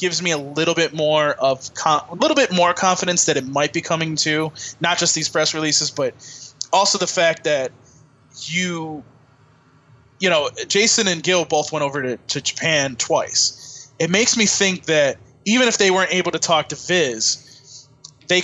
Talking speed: 185 wpm